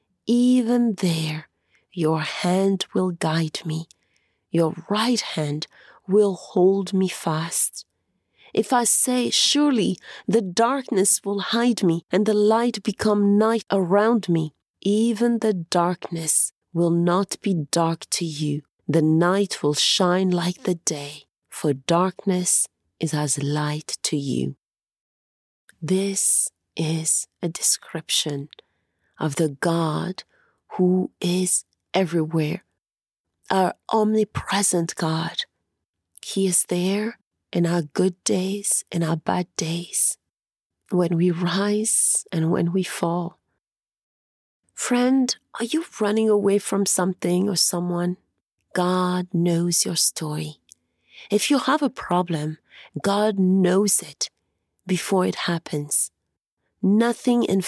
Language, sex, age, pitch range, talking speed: English, female, 30-49, 160-200 Hz, 115 wpm